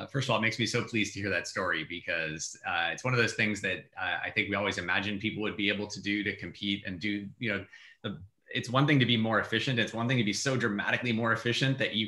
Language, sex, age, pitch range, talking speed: English, male, 30-49, 95-115 Hz, 285 wpm